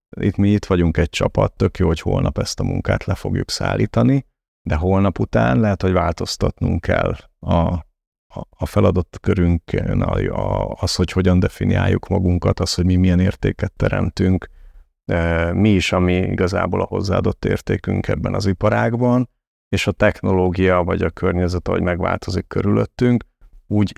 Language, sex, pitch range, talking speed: Hungarian, male, 90-105 Hz, 155 wpm